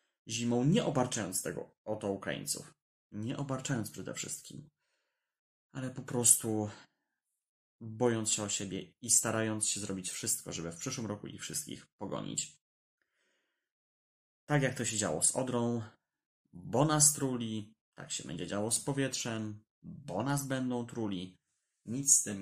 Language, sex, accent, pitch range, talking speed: Polish, male, native, 110-145 Hz, 140 wpm